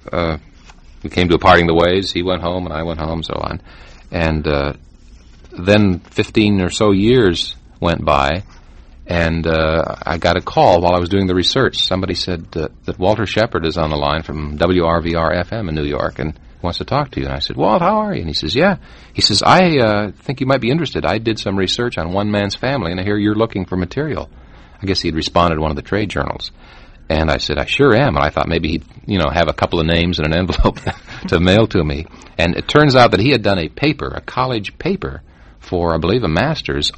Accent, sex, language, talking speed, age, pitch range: American, male, English, 240 wpm, 40-59, 80-105 Hz